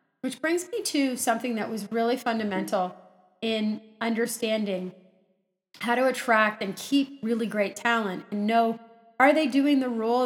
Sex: female